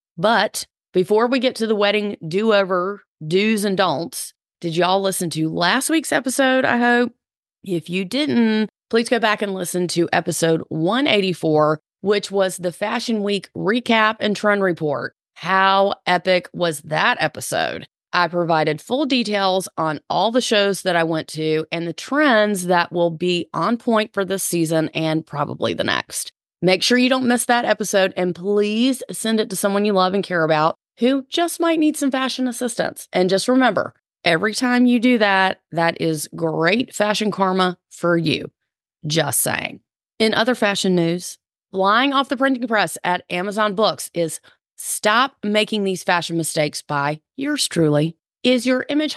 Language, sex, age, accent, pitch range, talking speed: English, female, 30-49, American, 175-235 Hz, 170 wpm